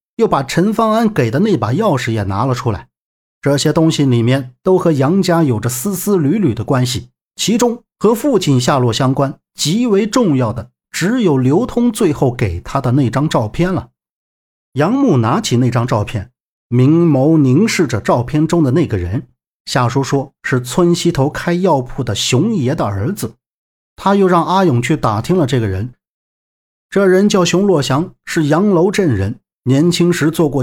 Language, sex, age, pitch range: Chinese, male, 50-69, 125-180 Hz